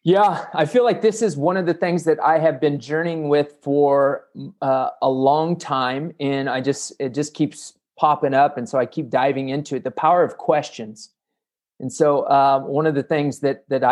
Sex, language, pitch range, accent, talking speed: male, English, 140-170 Hz, American, 210 wpm